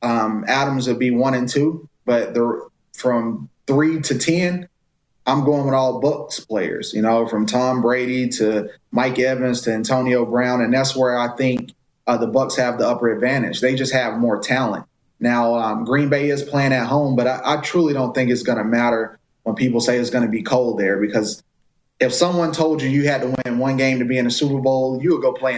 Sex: male